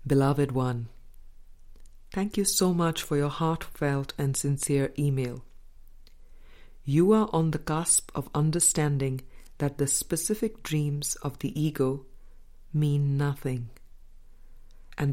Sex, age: female, 50-69